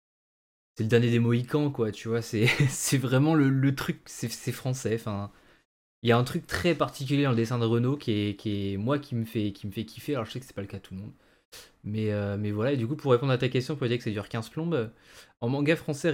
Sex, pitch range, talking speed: male, 105-130 Hz, 280 wpm